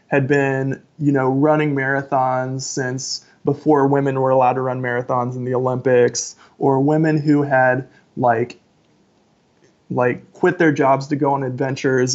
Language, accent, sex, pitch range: English, American, male, 130-150 Hz